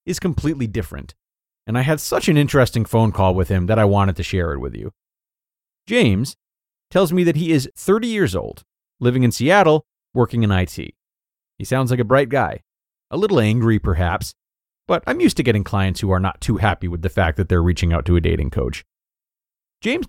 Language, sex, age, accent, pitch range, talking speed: English, male, 30-49, American, 100-155 Hz, 205 wpm